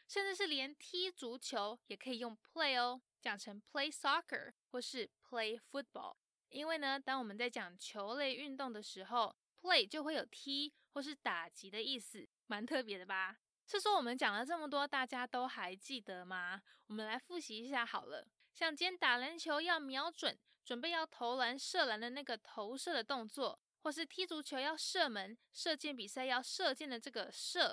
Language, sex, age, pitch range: Chinese, female, 20-39, 230-300 Hz